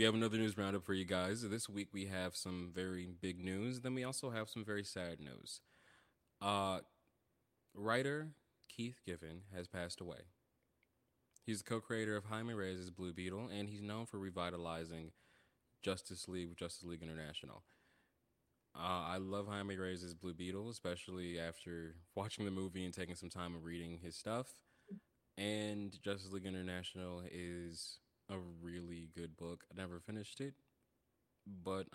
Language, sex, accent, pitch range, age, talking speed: English, male, American, 90-110 Hz, 20-39, 155 wpm